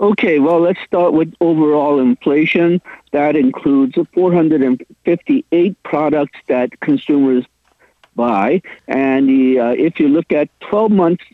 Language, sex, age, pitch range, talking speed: English, male, 50-69, 130-175 Hz, 110 wpm